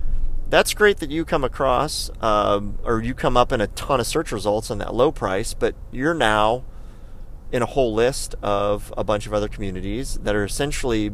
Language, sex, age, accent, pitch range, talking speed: English, male, 30-49, American, 100-120 Hz, 200 wpm